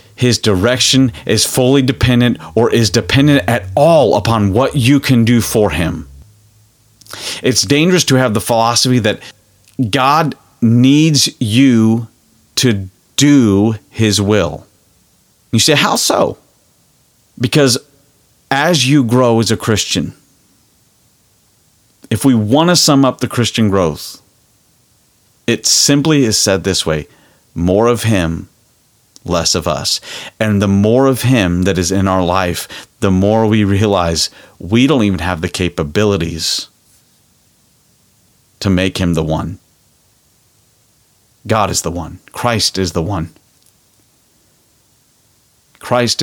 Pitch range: 95-125 Hz